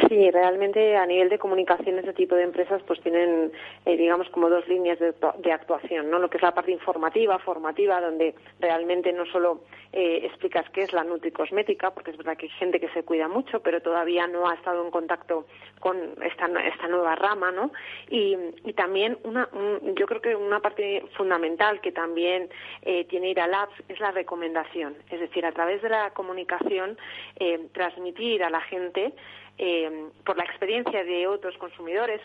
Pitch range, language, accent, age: 170-195 Hz, Spanish, Spanish, 30-49